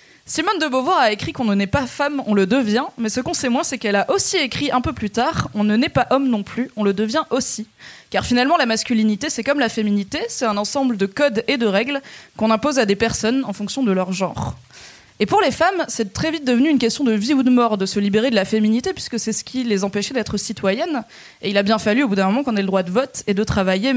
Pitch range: 200-260 Hz